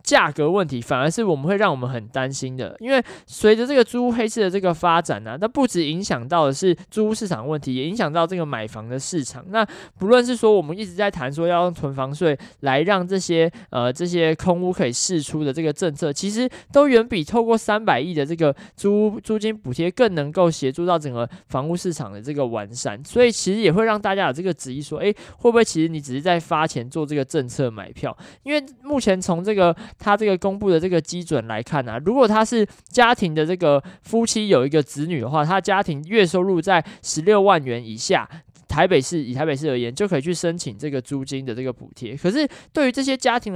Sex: male